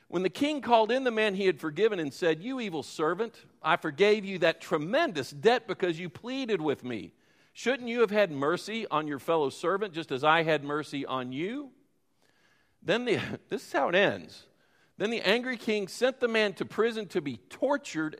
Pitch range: 160-220 Hz